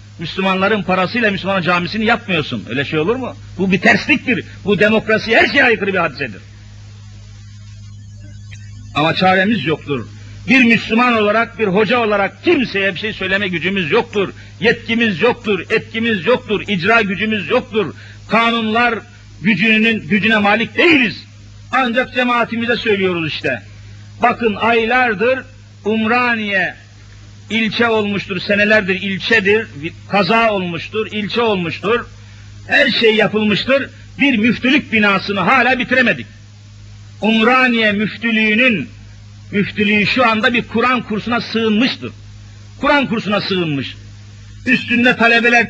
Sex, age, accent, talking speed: male, 50-69, native, 110 wpm